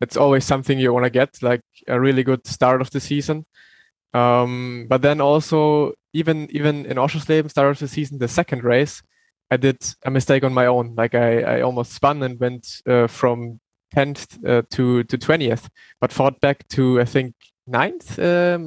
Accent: German